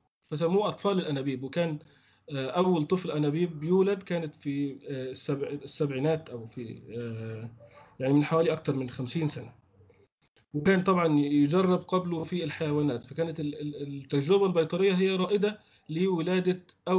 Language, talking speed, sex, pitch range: Arabic, 115 wpm, male, 145-185 Hz